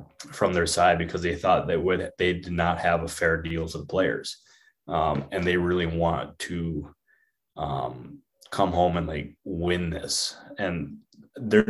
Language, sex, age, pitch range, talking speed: English, male, 20-39, 85-95 Hz, 165 wpm